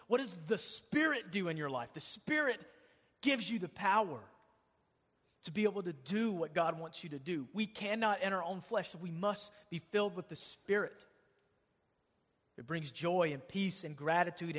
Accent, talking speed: American, 190 wpm